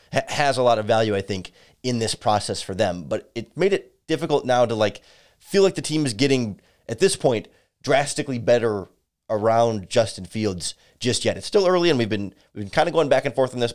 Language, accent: English, American